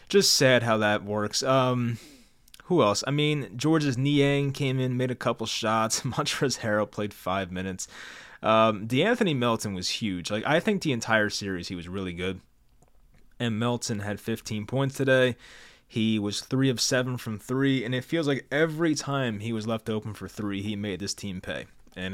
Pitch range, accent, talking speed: 105-130 Hz, American, 185 wpm